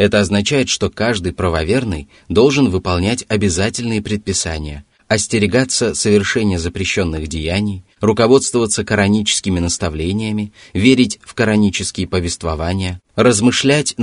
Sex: male